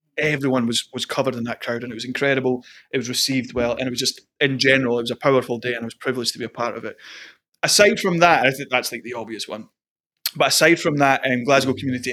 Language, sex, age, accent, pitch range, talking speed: English, male, 20-39, British, 120-140 Hz, 265 wpm